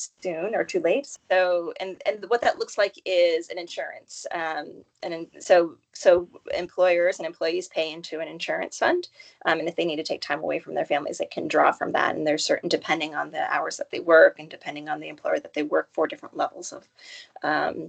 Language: English